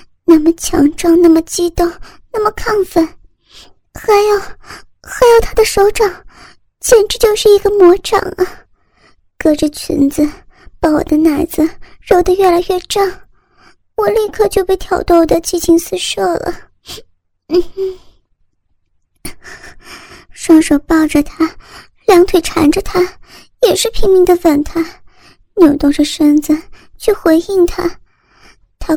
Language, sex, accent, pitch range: Chinese, male, native, 325-390 Hz